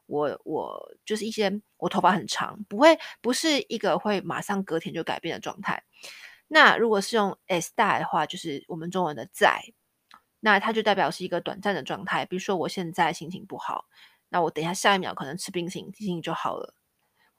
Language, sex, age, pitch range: Chinese, female, 20-39, 170-205 Hz